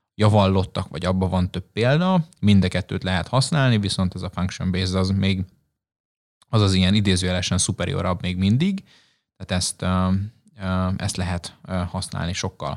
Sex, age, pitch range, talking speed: male, 20-39, 95-110 Hz, 130 wpm